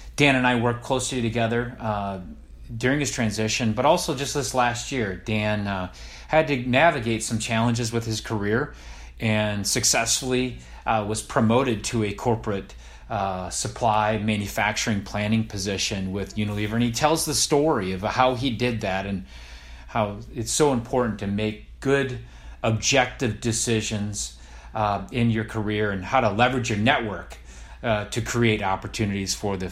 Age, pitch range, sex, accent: 30-49, 95-120 Hz, male, American